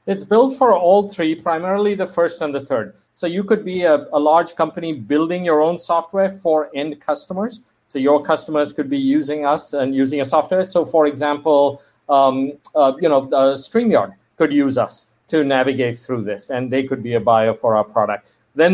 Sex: male